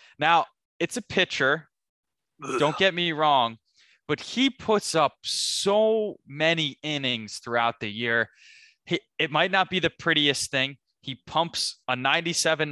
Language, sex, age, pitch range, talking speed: English, male, 20-39, 120-165 Hz, 140 wpm